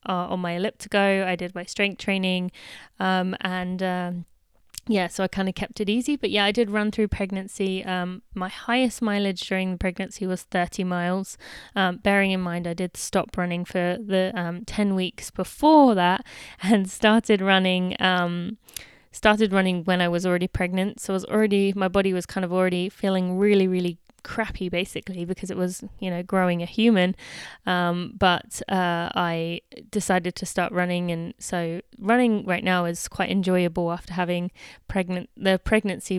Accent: British